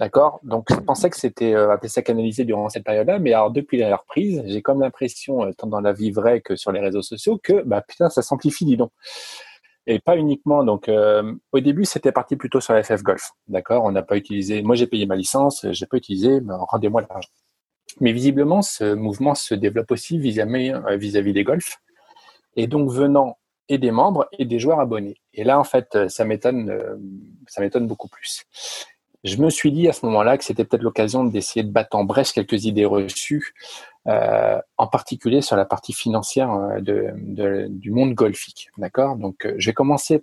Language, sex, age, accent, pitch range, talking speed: French, male, 30-49, French, 105-135 Hz, 205 wpm